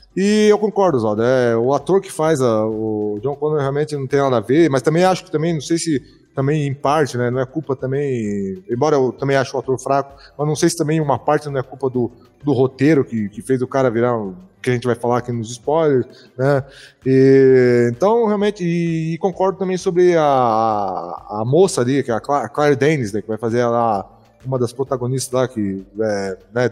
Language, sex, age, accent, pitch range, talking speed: Portuguese, male, 20-39, Brazilian, 125-170 Hz, 230 wpm